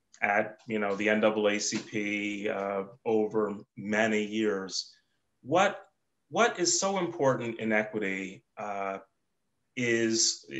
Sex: male